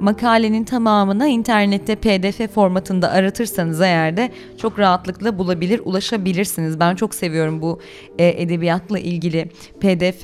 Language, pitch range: Turkish, 170-220 Hz